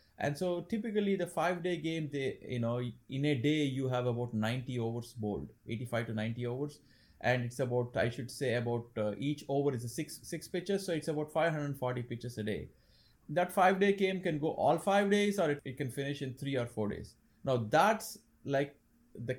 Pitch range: 120-160 Hz